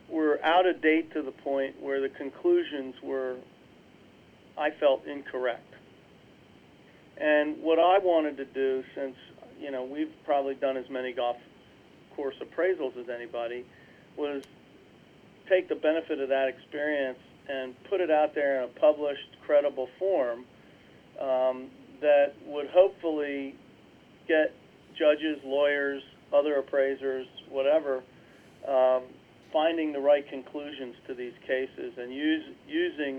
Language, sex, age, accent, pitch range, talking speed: English, male, 40-59, American, 125-145 Hz, 125 wpm